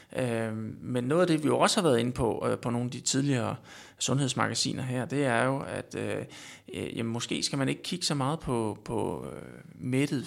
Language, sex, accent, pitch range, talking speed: Danish, male, native, 120-145 Hz, 195 wpm